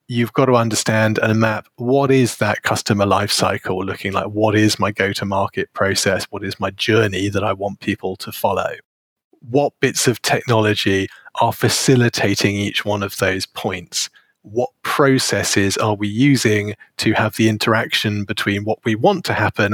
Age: 30-49